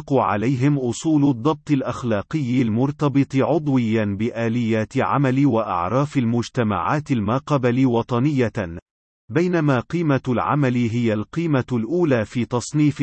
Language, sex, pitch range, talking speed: Arabic, male, 115-145 Hz, 95 wpm